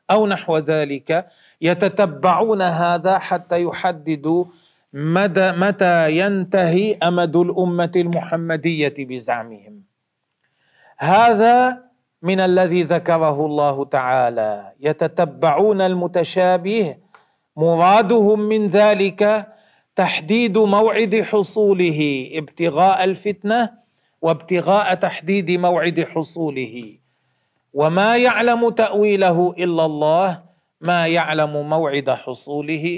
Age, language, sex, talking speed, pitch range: 40-59, Arabic, male, 80 wpm, 150-190 Hz